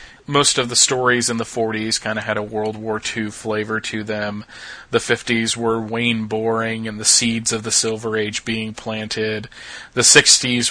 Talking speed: 185 wpm